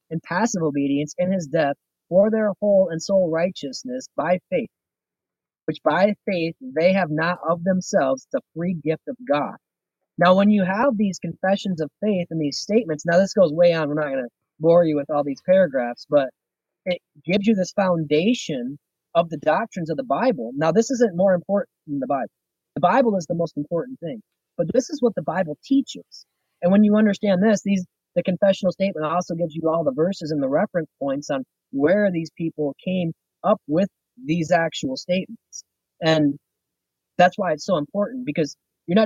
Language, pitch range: English, 155-205 Hz